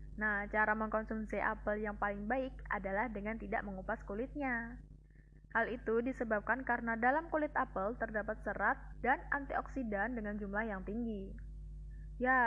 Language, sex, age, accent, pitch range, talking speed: Indonesian, female, 10-29, native, 205-235 Hz, 135 wpm